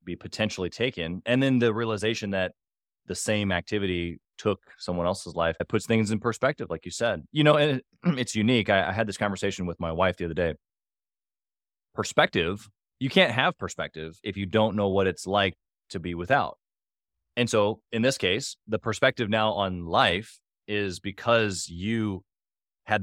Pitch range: 95-115 Hz